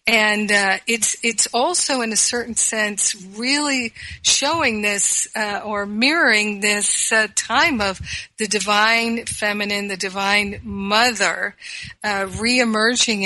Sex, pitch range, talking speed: female, 200-240 Hz, 120 wpm